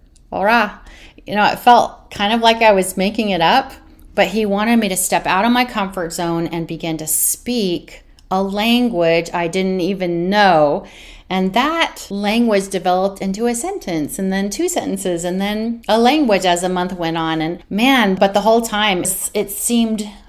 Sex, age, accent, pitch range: female, 30-49, American, 175-220 Hz